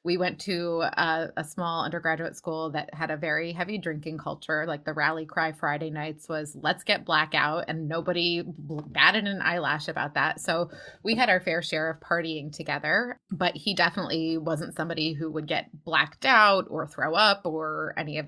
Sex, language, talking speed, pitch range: female, English, 190 wpm, 155-180 Hz